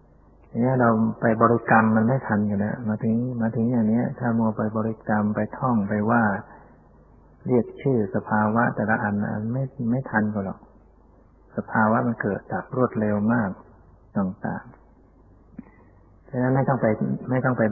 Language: Thai